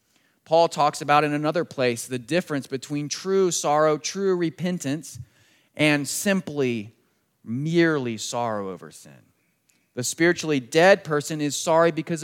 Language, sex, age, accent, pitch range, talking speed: English, male, 30-49, American, 130-165 Hz, 125 wpm